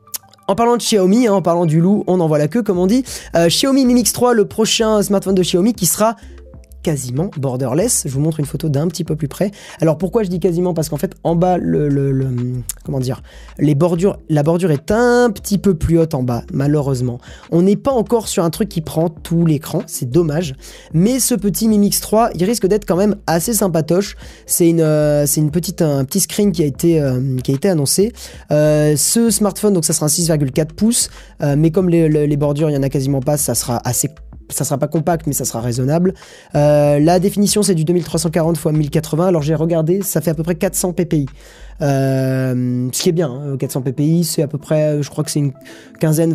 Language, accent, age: French, French, 20-39